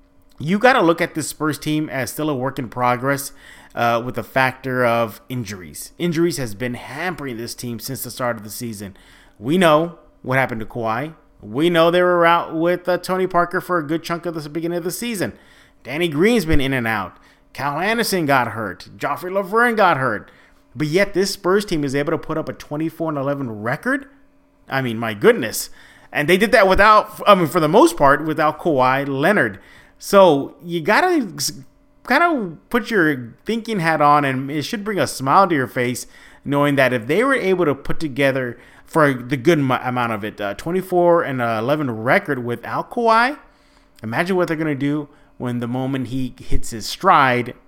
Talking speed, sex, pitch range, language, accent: 195 wpm, male, 125-175 Hz, English, American